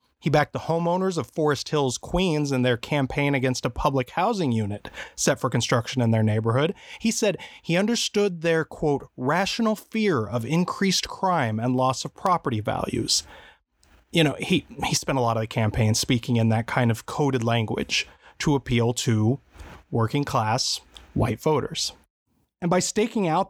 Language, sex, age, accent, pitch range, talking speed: English, male, 30-49, American, 125-185 Hz, 170 wpm